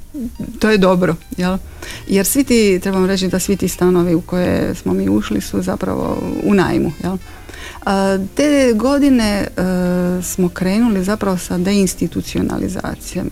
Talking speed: 140 wpm